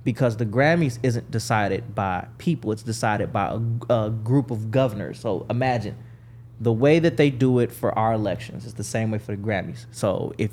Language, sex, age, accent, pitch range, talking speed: English, male, 20-39, American, 110-130 Hz, 200 wpm